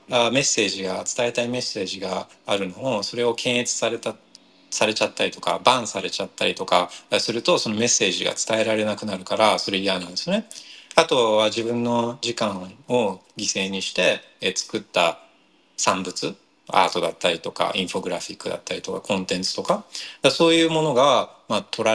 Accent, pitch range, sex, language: native, 105-140 Hz, male, Japanese